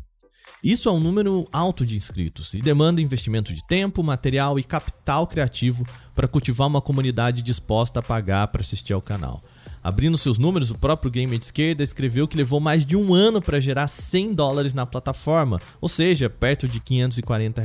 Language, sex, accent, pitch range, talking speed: Portuguese, male, Brazilian, 120-160 Hz, 180 wpm